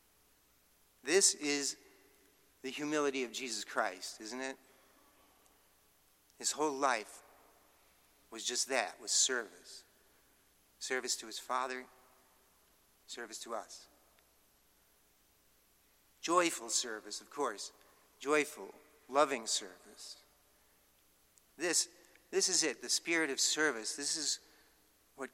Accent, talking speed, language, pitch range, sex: American, 100 wpm, English, 115-155 Hz, male